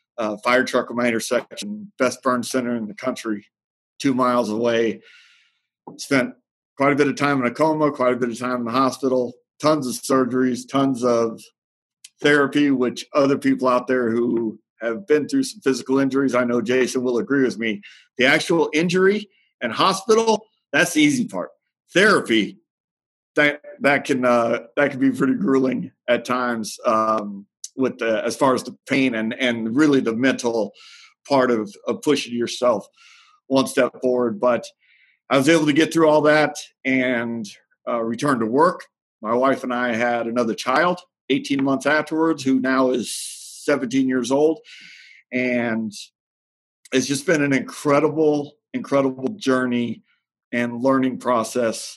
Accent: American